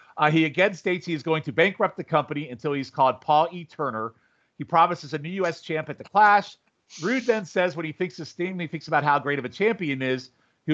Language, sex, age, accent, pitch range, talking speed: English, male, 40-59, American, 125-165 Hz, 245 wpm